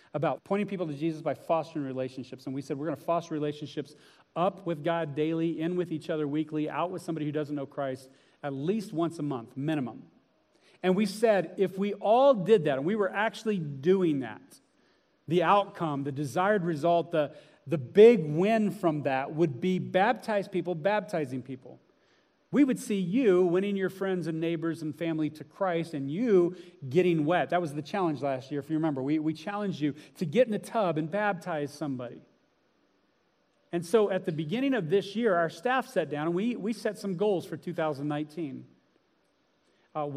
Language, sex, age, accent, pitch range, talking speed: English, male, 40-59, American, 150-195 Hz, 190 wpm